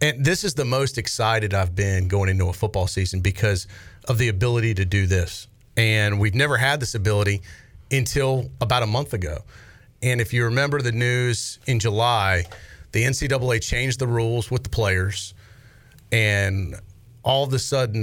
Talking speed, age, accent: 175 wpm, 30-49, American